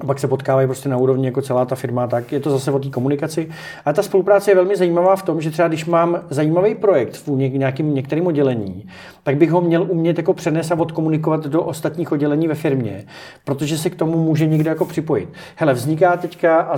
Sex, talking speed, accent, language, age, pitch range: male, 220 wpm, native, Czech, 40-59, 135-165 Hz